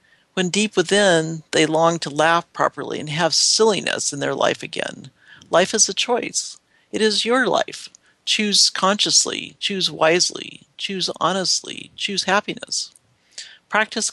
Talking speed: 135 wpm